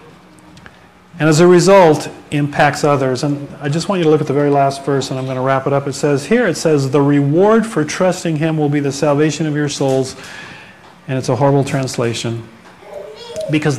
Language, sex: English, male